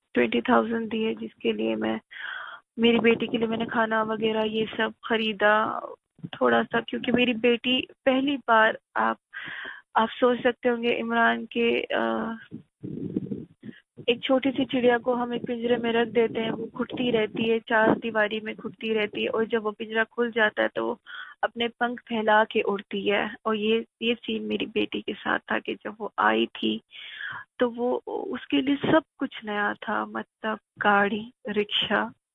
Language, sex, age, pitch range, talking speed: Urdu, female, 20-39, 215-250 Hz, 180 wpm